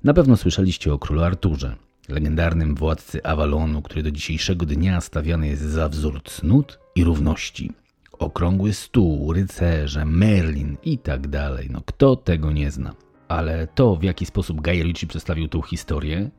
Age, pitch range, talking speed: 40-59, 75-100 Hz, 150 wpm